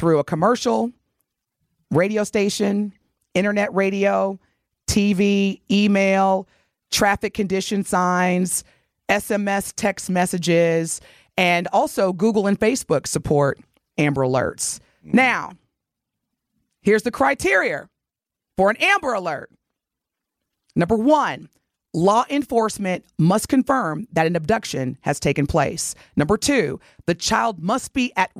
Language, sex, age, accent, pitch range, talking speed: English, female, 30-49, American, 180-250 Hz, 105 wpm